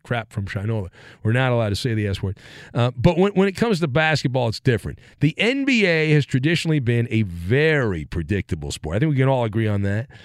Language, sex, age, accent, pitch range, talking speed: English, male, 40-59, American, 125-180 Hz, 215 wpm